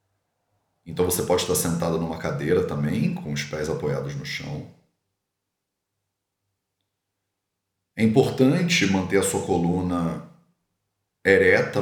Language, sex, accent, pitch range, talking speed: English, male, Brazilian, 90-115 Hz, 105 wpm